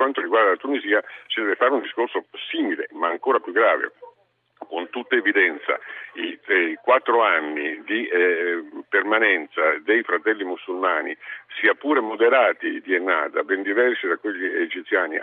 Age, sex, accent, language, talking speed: 50-69, male, native, Italian, 150 wpm